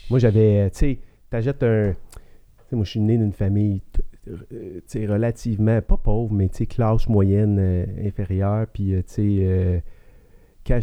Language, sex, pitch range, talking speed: French, male, 100-115 Hz, 145 wpm